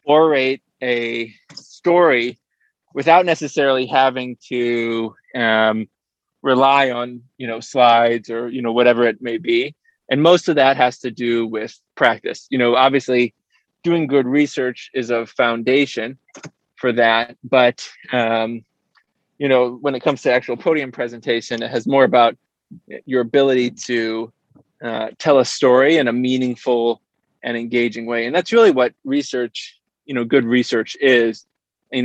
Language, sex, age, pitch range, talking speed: English, male, 20-39, 115-135 Hz, 150 wpm